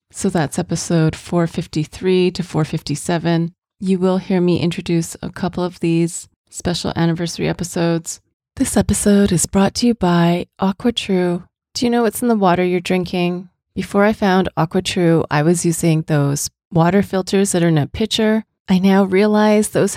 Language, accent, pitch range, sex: English, American, 170-205 Hz, female